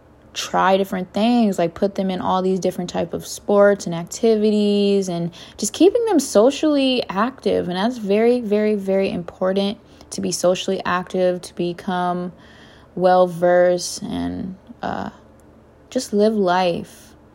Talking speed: 135 wpm